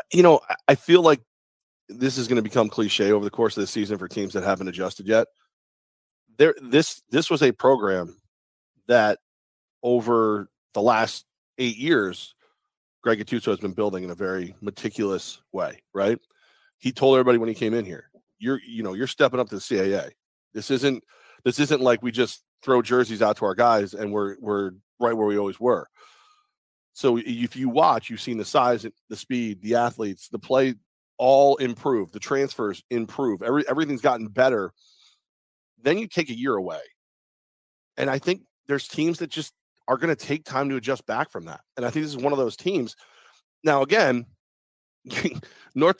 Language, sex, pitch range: English, male, 110-155 Hz